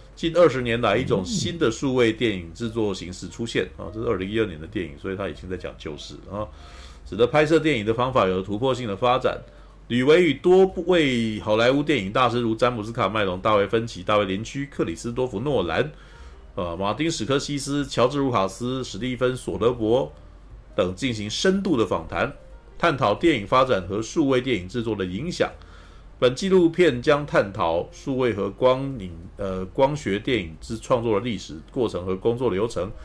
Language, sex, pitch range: Chinese, male, 100-140 Hz